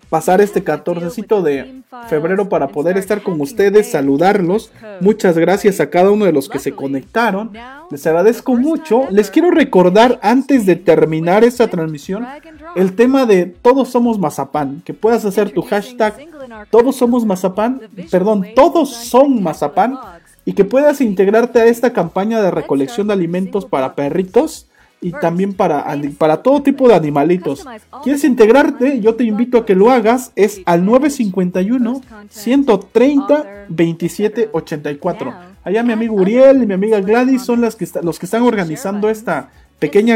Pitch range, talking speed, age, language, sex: 175-240 Hz, 150 wpm, 40-59, Spanish, male